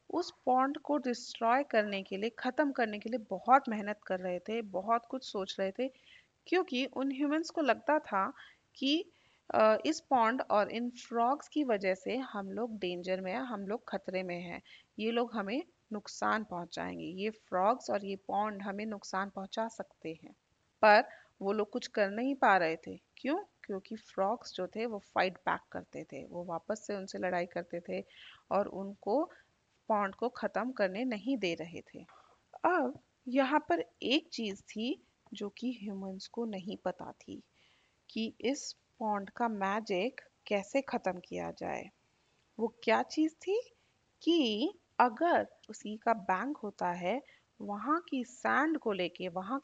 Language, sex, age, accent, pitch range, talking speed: Hindi, female, 30-49, native, 195-255 Hz, 165 wpm